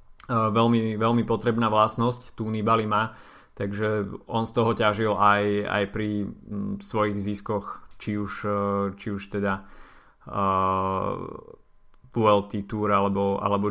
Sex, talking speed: male, 110 wpm